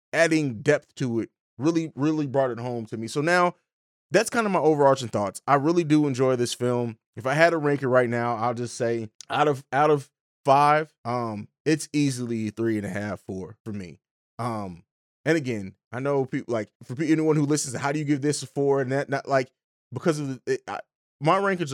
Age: 20-39